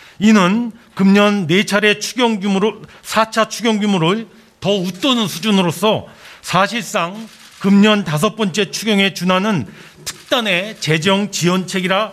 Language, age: Korean, 40-59